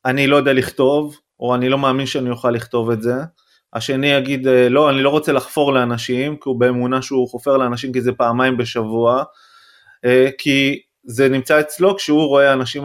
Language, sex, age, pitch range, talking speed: Hebrew, male, 30-49, 125-150 Hz, 175 wpm